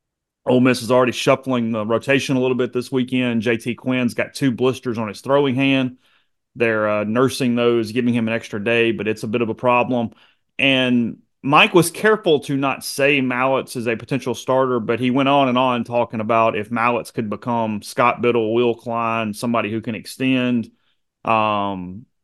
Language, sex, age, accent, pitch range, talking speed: English, male, 30-49, American, 110-130 Hz, 190 wpm